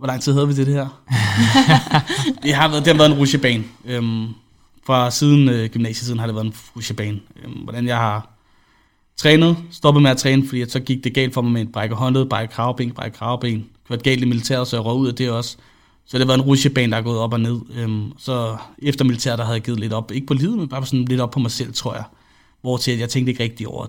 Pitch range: 115-130 Hz